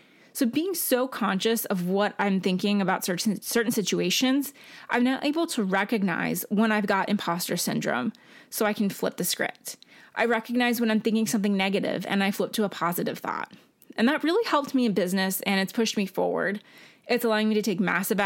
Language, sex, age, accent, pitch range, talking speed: English, female, 20-39, American, 195-235 Hz, 195 wpm